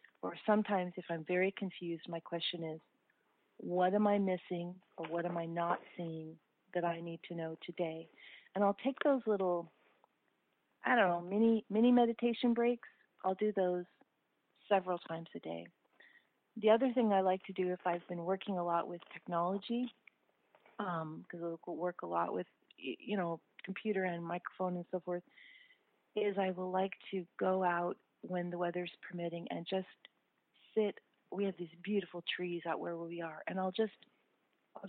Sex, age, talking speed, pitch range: female, 40-59, 170 wpm, 175-205 Hz